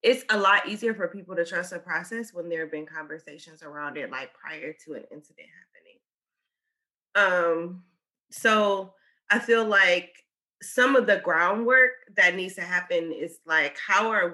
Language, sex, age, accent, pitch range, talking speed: English, female, 20-39, American, 160-205 Hz, 165 wpm